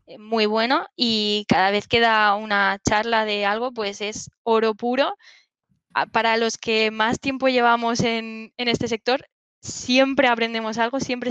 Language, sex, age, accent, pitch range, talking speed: Spanish, female, 10-29, Spanish, 200-230 Hz, 155 wpm